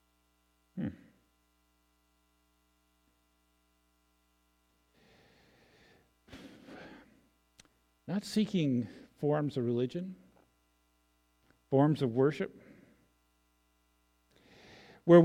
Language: English